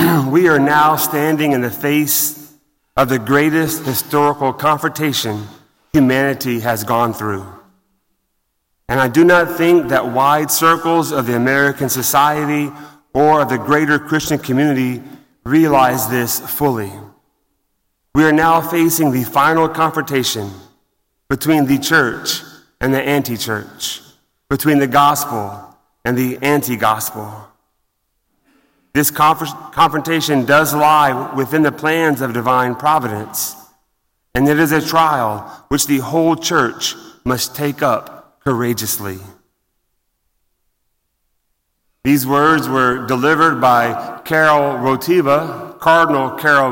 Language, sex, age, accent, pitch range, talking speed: English, male, 30-49, American, 125-155 Hz, 115 wpm